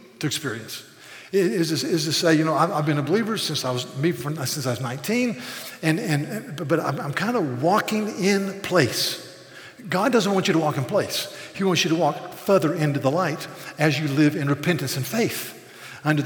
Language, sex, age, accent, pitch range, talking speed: English, male, 50-69, American, 150-190 Hz, 215 wpm